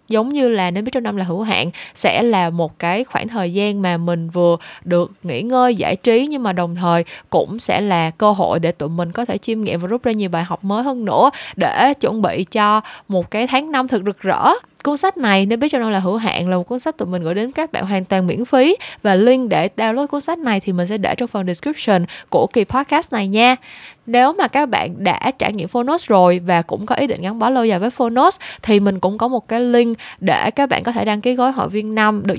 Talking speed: 265 wpm